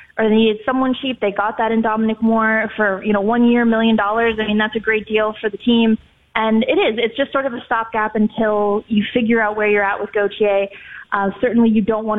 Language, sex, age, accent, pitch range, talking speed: English, female, 20-39, American, 210-235 Hz, 245 wpm